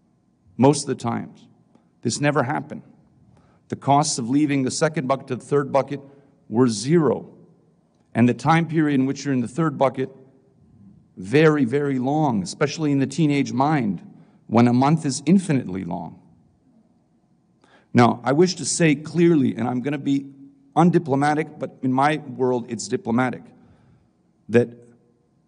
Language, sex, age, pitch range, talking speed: English, male, 50-69, 115-145 Hz, 150 wpm